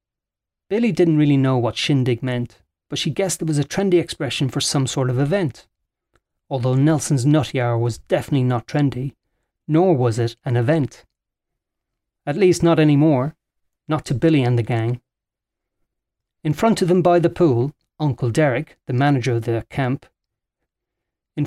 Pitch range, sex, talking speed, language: 130-175 Hz, male, 160 wpm, English